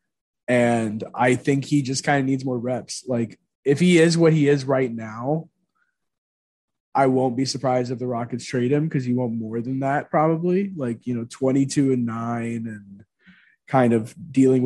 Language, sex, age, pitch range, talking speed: English, male, 20-39, 115-135 Hz, 185 wpm